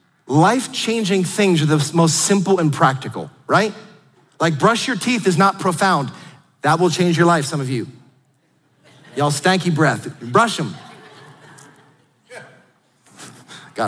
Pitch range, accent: 145-185 Hz, American